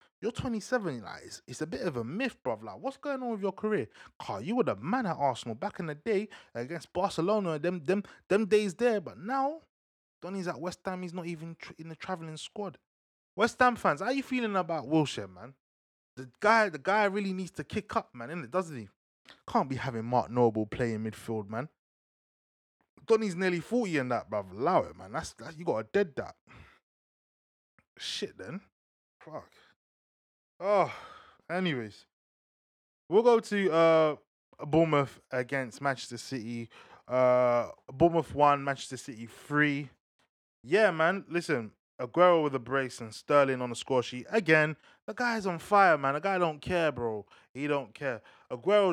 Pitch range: 125-185 Hz